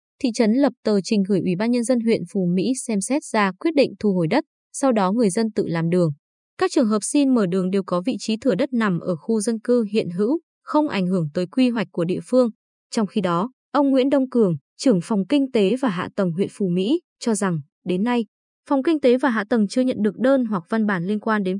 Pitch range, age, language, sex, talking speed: 190-255 Hz, 20-39, Vietnamese, female, 260 wpm